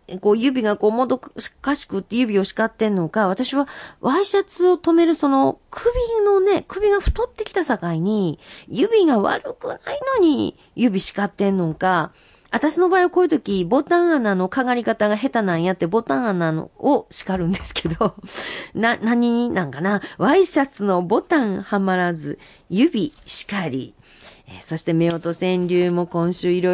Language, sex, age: Japanese, female, 40-59